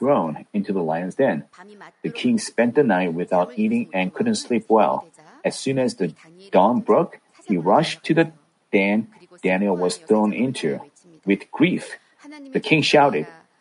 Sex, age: male, 40-59